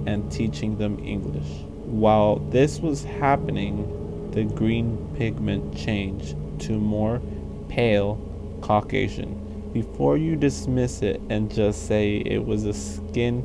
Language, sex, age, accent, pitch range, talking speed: English, male, 20-39, American, 105-130 Hz, 120 wpm